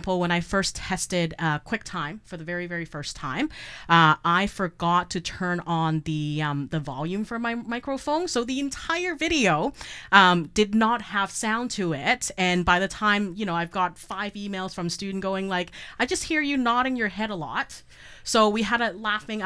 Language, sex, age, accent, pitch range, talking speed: English, female, 30-49, American, 170-215 Hz, 200 wpm